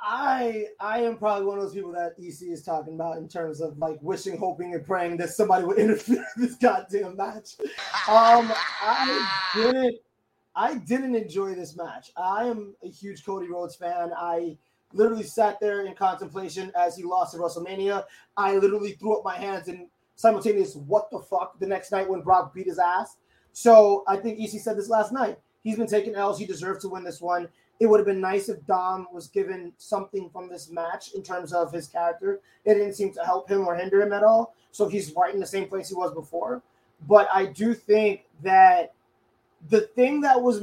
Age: 20-39